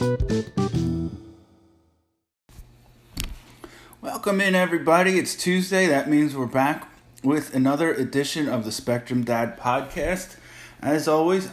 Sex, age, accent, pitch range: male, 20-39, American, 120-160 Hz